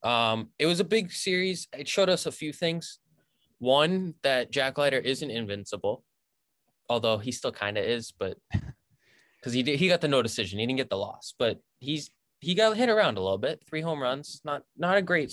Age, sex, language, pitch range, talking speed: 20-39, male, English, 115-140 Hz, 210 wpm